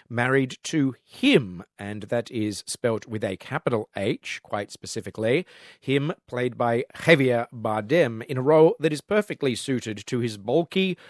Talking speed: 150 wpm